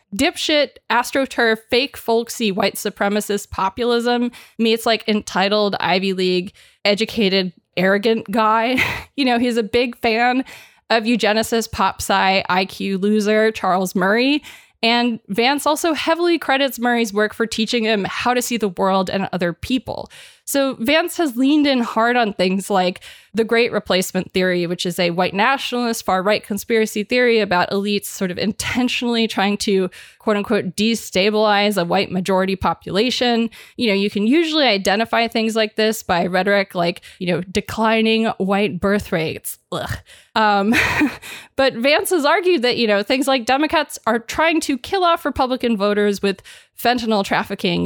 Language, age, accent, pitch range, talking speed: English, 20-39, American, 195-245 Hz, 155 wpm